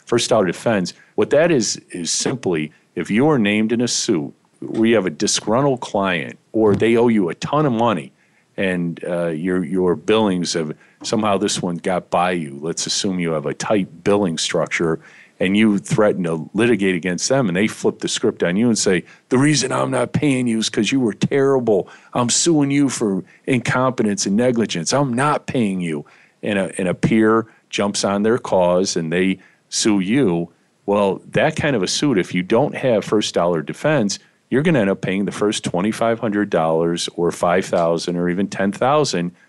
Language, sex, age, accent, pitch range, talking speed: English, male, 40-59, American, 85-120 Hz, 200 wpm